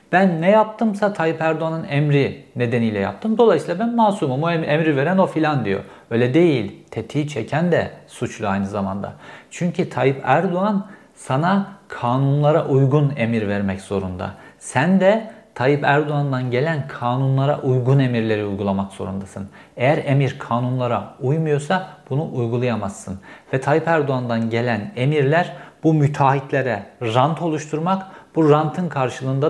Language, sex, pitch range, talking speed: Turkish, male, 120-160 Hz, 125 wpm